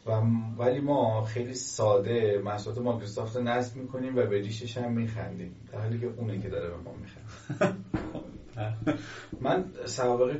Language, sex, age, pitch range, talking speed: Persian, male, 30-49, 105-125 Hz, 145 wpm